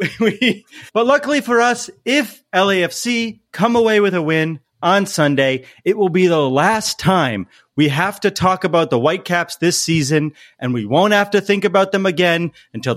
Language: English